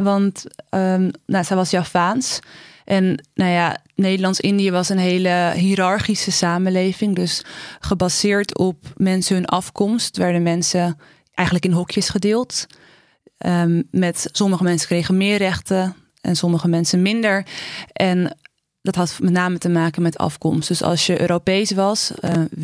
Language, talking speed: Dutch, 125 wpm